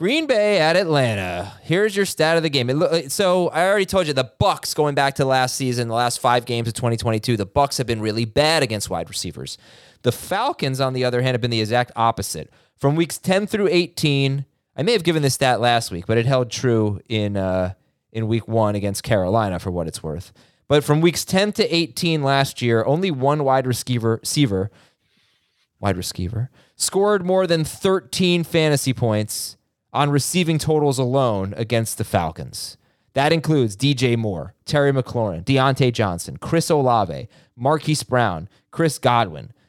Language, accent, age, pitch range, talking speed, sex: English, American, 20-39, 110-150 Hz, 180 wpm, male